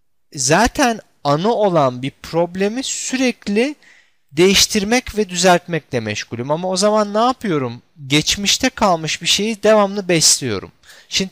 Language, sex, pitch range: Turkish, male, 130-195 Hz